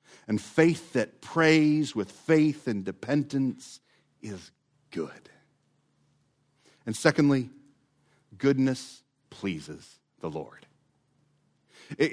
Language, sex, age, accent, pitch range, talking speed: English, male, 50-69, American, 130-210 Hz, 85 wpm